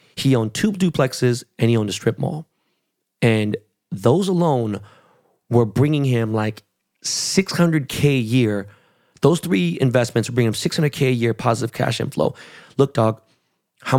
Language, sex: English, male